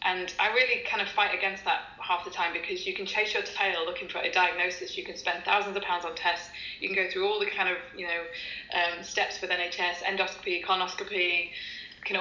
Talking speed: 225 wpm